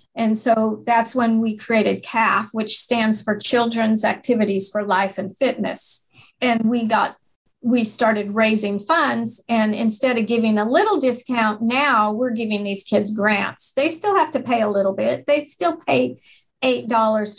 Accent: American